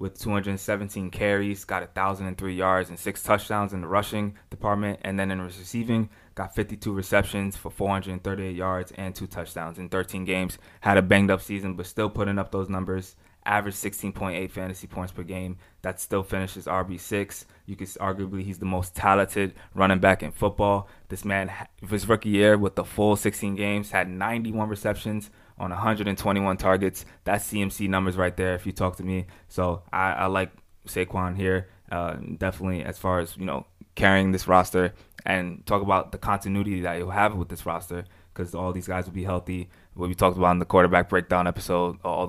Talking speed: 185 wpm